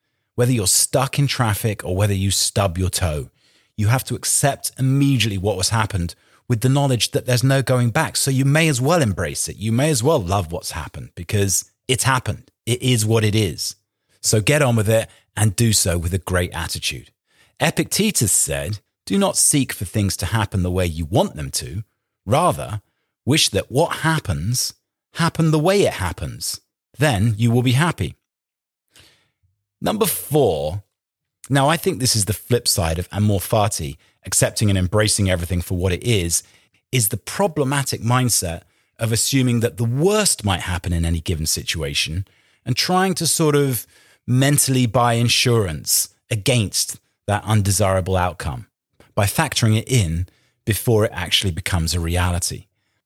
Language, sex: English, male